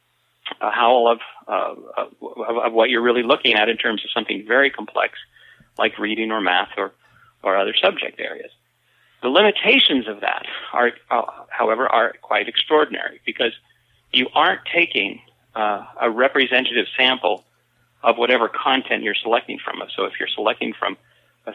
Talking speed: 155 wpm